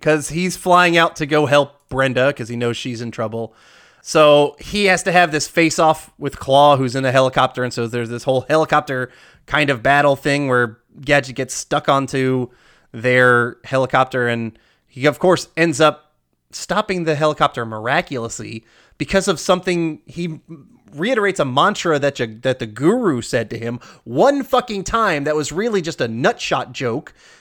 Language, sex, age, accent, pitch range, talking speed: English, male, 30-49, American, 120-160 Hz, 170 wpm